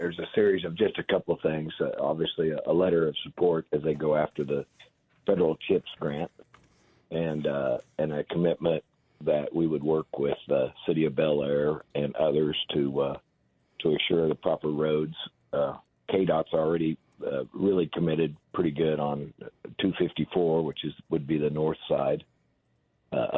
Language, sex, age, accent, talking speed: English, male, 50-69, American, 170 wpm